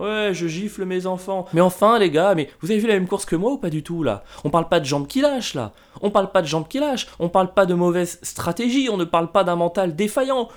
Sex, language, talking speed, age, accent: male, French, 290 wpm, 20-39, French